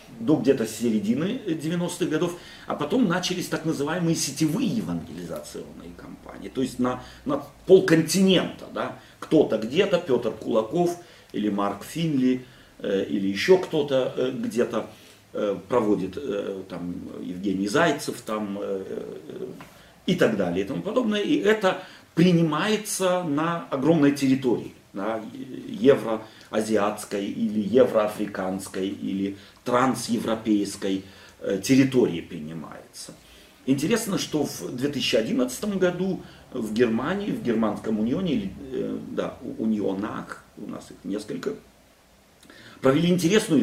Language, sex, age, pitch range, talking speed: Russian, male, 40-59, 110-175 Hz, 115 wpm